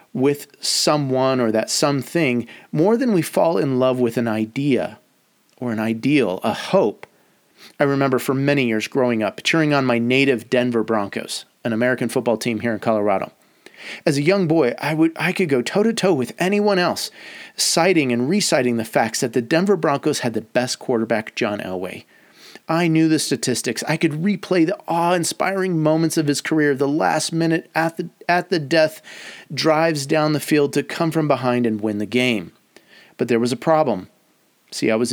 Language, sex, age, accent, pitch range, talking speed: English, male, 30-49, American, 120-165 Hz, 185 wpm